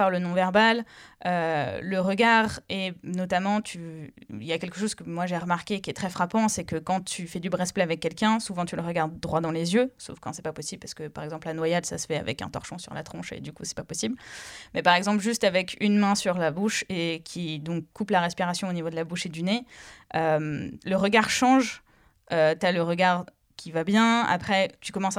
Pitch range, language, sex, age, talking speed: 170-210 Hz, French, female, 20-39, 250 wpm